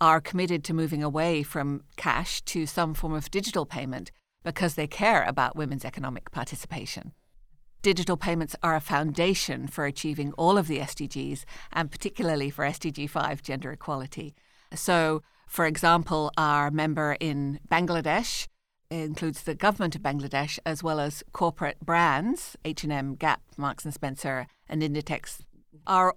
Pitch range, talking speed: 145-170 Hz, 140 wpm